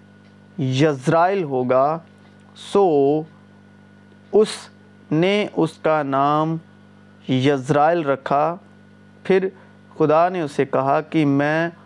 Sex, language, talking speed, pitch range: male, Urdu, 90 wpm, 115-165 Hz